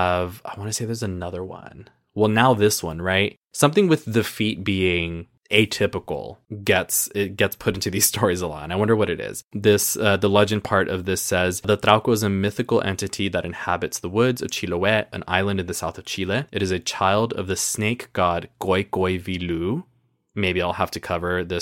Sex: male